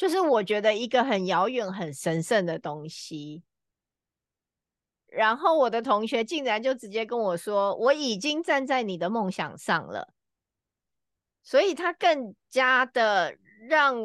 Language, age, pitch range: Chinese, 30-49, 170-235 Hz